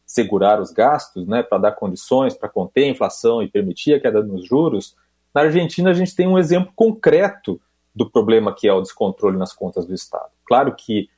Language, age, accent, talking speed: Portuguese, 40-59, Brazilian, 200 wpm